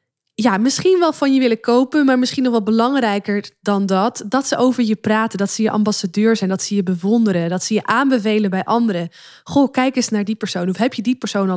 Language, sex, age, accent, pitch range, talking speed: Dutch, female, 20-39, Dutch, 190-250 Hz, 240 wpm